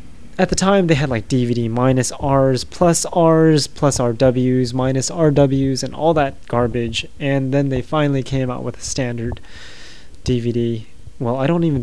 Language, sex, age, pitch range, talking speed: English, male, 20-39, 120-145 Hz, 165 wpm